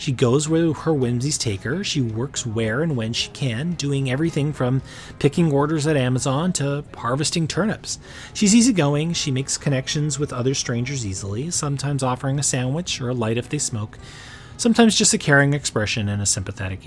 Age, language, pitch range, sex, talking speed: 30-49, English, 120-155 Hz, male, 180 wpm